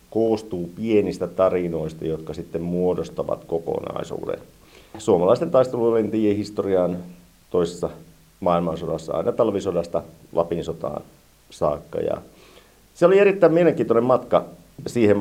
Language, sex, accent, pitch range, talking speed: Finnish, male, native, 85-110 Hz, 90 wpm